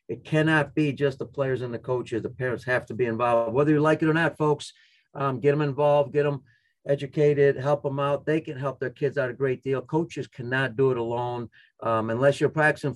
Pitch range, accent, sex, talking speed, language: 130-155 Hz, American, male, 230 wpm, English